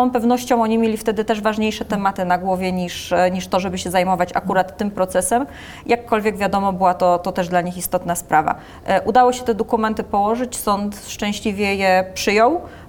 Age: 20-39